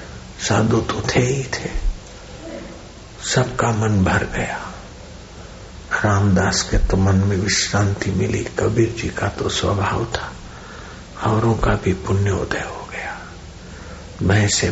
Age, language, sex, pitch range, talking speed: 60-79, Hindi, male, 90-100 Hz, 120 wpm